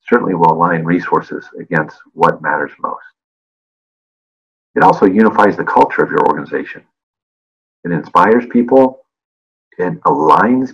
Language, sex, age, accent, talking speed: English, male, 50-69, American, 115 wpm